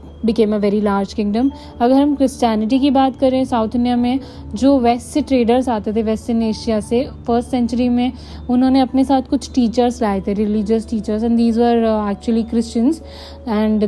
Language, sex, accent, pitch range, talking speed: Hindi, female, native, 215-255 Hz, 185 wpm